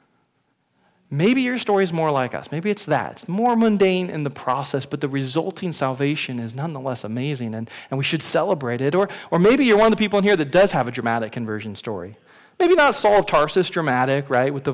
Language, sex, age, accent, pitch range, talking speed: English, male, 40-59, American, 130-190 Hz, 225 wpm